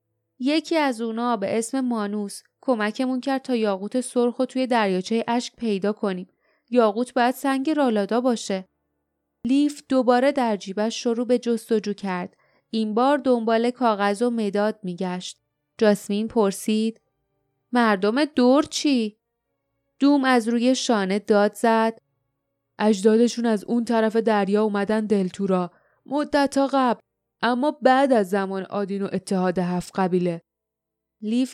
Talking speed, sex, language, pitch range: 125 wpm, female, Persian, 195-250 Hz